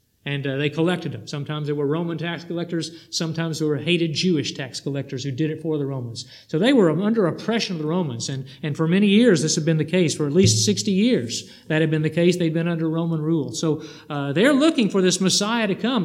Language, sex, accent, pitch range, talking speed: English, male, American, 150-185 Hz, 245 wpm